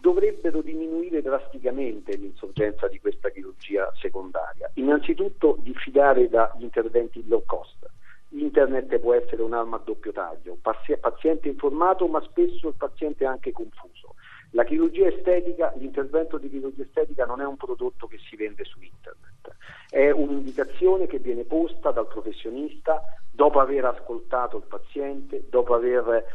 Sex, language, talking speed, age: male, Italian, 135 wpm, 50-69